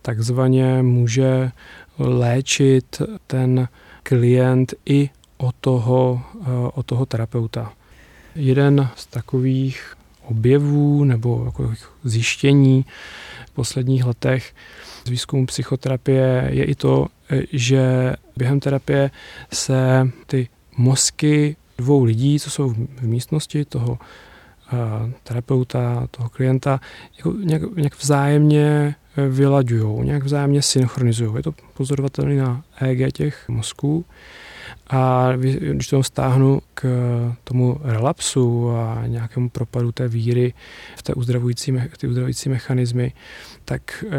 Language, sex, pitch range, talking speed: Czech, male, 120-135 Hz, 100 wpm